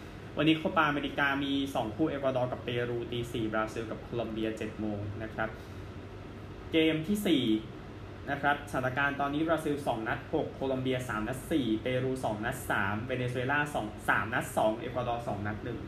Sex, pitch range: male, 105-130 Hz